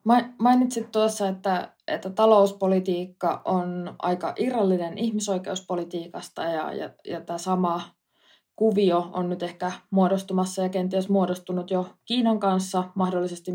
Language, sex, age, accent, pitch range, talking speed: Finnish, female, 20-39, native, 175-200 Hz, 110 wpm